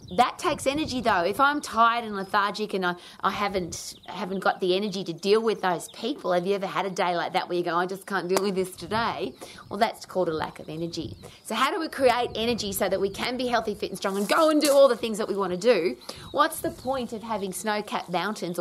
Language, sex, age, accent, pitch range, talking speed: English, female, 30-49, Australian, 175-220 Hz, 265 wpm